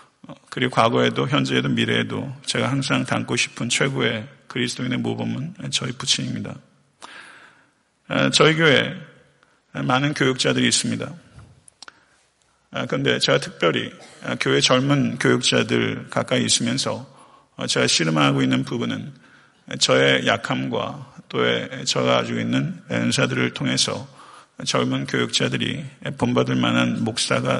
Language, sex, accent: Korean, male, native